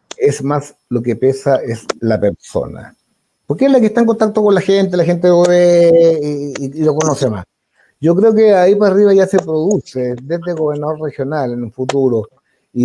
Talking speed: 200 wpm